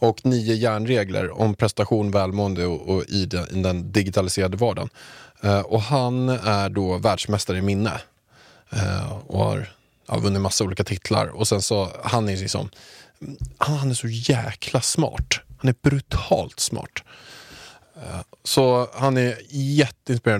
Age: 20-39